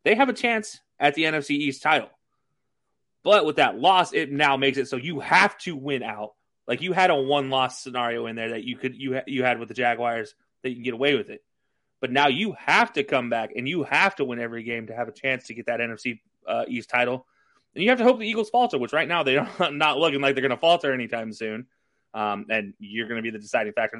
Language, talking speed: English, 260 wpm